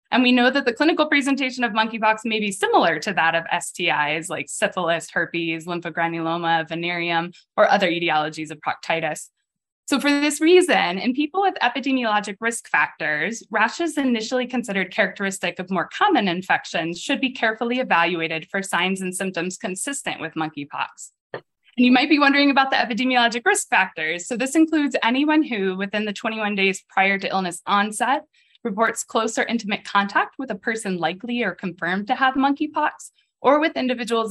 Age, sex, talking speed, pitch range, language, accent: 10-29, female, 165 wpm, 185-270 Hz, English, American